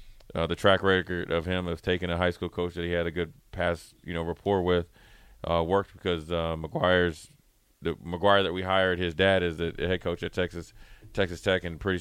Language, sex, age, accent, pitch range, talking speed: English, male, 30-49, American, 85-95 Hz, 220 wpm